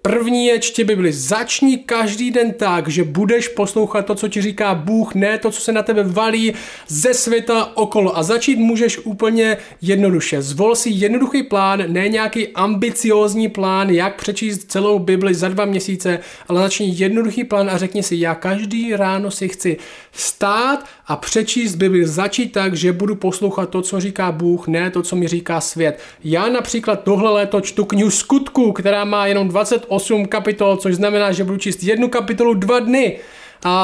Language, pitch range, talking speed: Czech, 185-220 Hz, 175 wpm